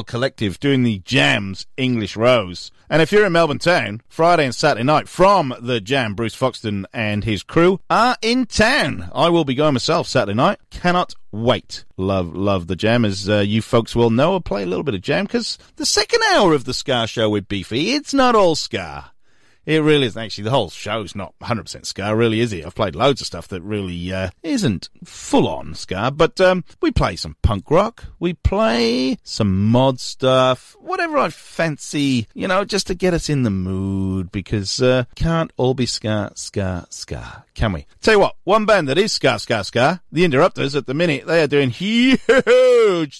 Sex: male